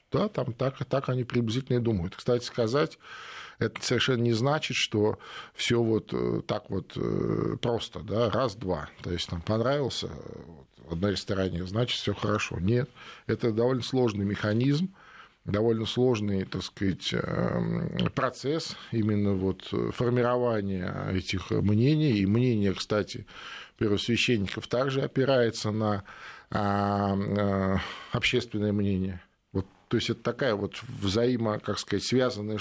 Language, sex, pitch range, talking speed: Russian, male, 100-120 Hz, 115 wpm